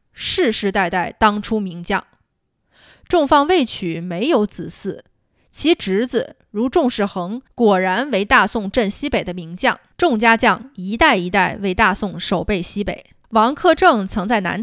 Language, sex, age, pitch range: Chinese, female, 20-39, 190-255 Hz